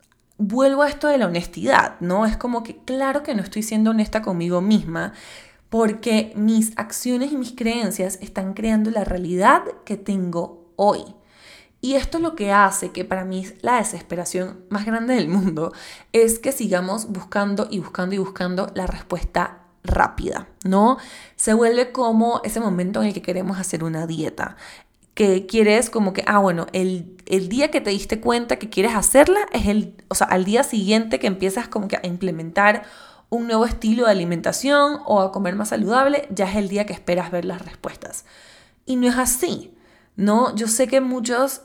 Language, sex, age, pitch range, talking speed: Spanish, female, 20-39, 185-230 Hz, 185 wpm